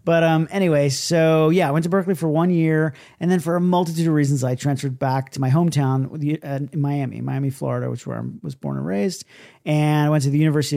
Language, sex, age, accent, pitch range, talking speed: English, male, 40-59, American, 130-160 Hz, 240 wpm